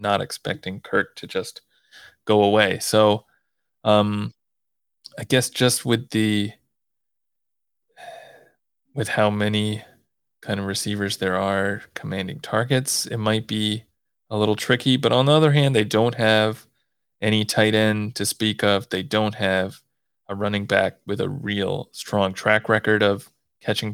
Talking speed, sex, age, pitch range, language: 145 wpm, male, 20-39, 105-120 Hz, English